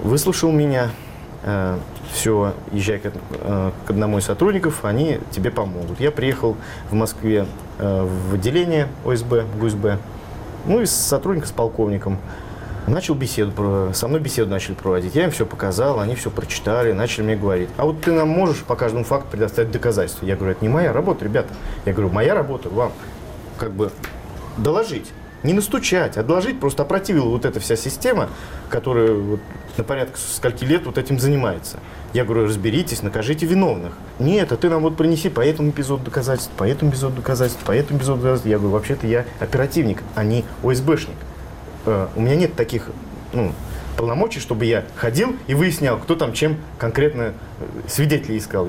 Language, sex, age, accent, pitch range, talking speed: Russian, male, 30-49, native, 105-145 Hz, 170 wpm